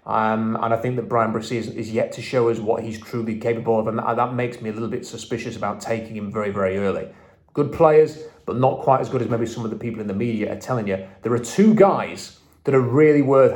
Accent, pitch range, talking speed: British, 110-135 Hz, 255 wpm